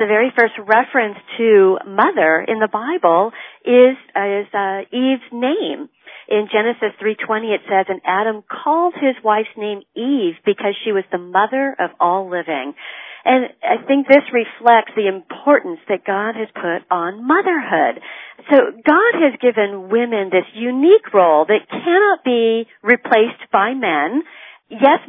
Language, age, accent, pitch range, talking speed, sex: English, 50-69, American, 195-265 Hz, 150 wpm, female